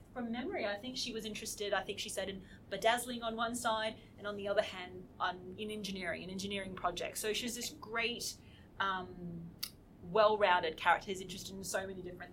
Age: 30-49